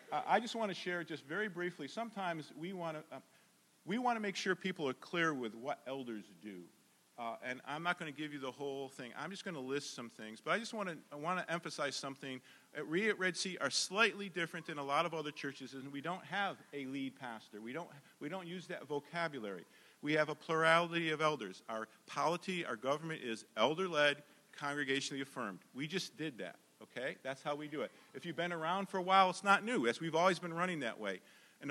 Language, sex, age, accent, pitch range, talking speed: English, male, 50-69, American, 145-185 Hz, 235 wpm